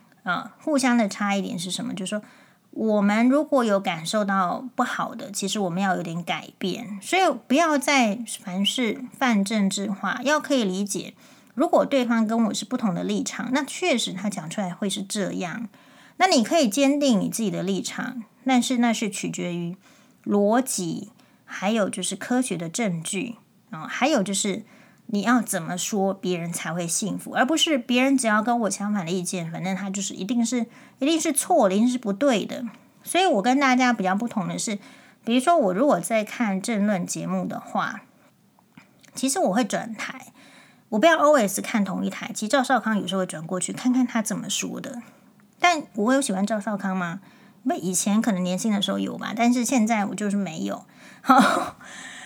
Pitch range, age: 195-255 Hz, 30-49